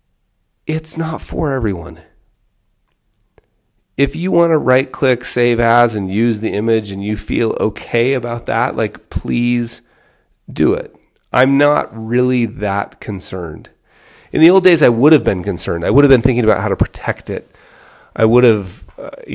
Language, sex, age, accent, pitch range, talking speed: English, male, 30-49, American, 100-130 Hz, 165 wpm